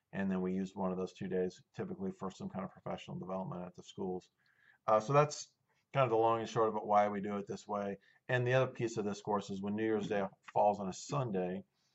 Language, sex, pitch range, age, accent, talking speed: English, male, 95-115 Hz, 40-59, American, 260 wpm